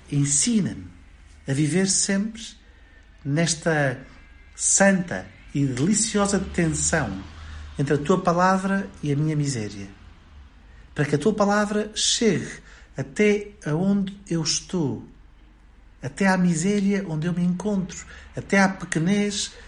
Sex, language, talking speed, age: male, Portuguese, 115 wpm, 50-69